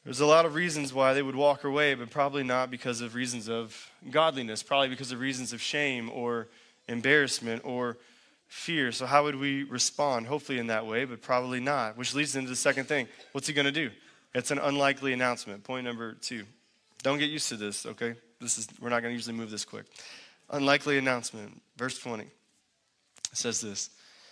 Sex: male